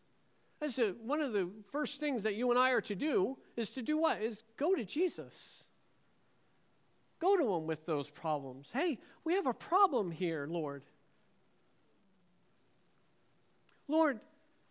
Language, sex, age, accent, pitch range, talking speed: English, male, 50-69, American, 220-325 Hz, 140 wpm